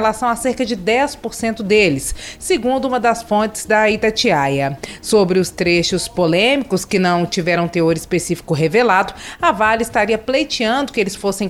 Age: 30-49